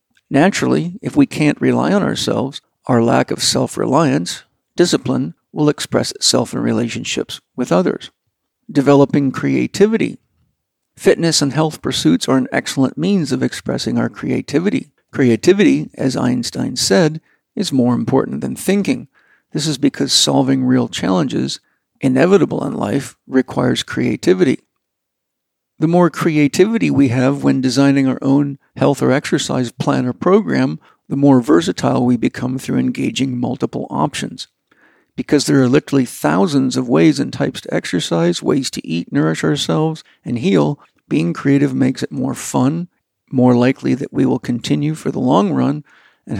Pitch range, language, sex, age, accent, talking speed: 130-150 Hz, English, male, 50-69, American, 145 wpm